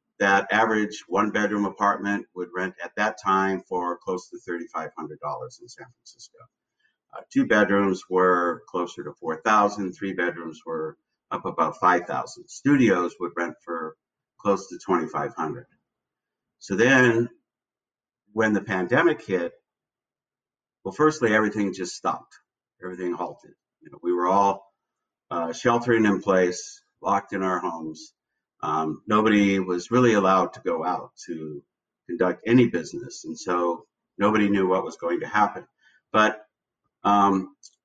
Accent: American